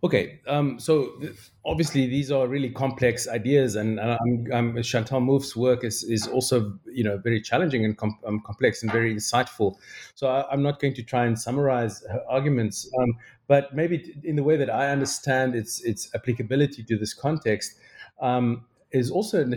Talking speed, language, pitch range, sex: 185 wpm, English, 110-130 Hz, male